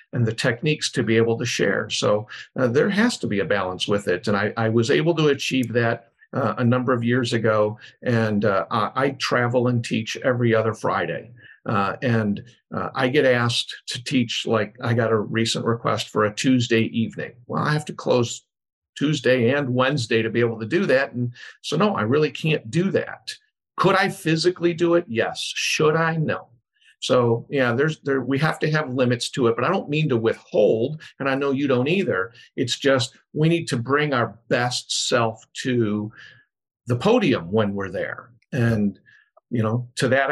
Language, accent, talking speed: English, American, 200 wpm